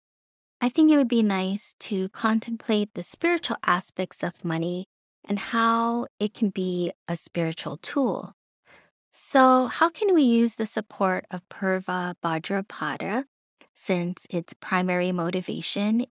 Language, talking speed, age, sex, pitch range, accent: English, 130 wpm, 20-39, female, 180-255 Hz, American